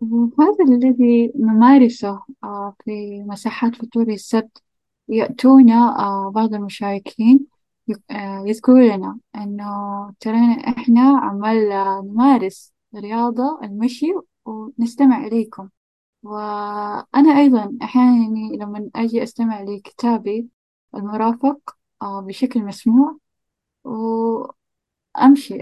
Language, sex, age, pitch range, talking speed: Arabic, female, 10-29, 200-245 Hz, 75 wpm